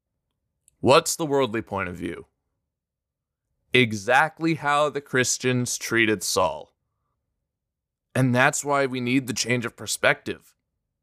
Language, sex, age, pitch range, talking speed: English, male, 20-39, 110-135 Hz, 115 wpm